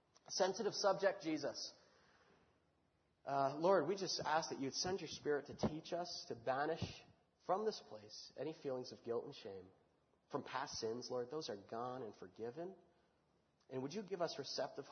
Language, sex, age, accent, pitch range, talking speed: Spanish, male, 30-49, American, 145-195 Hz, 170 wpm